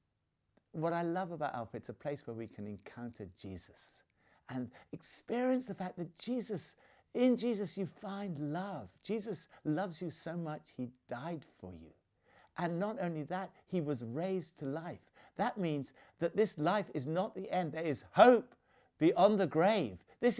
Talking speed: 170 wpm